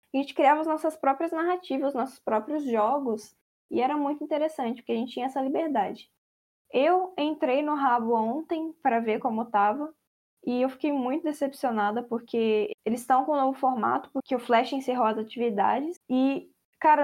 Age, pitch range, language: 10-29, 235-290 Hz, Portuguese